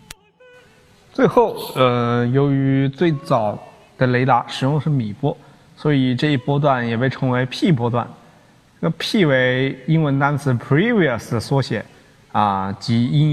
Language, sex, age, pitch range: Chinese, male, 20-39, 115-145 Hz